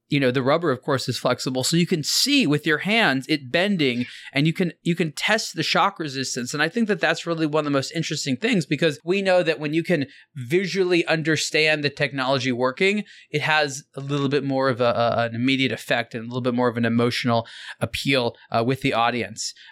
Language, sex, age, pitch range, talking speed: English, male, 20-39, 130-170 Hz, 225 wpm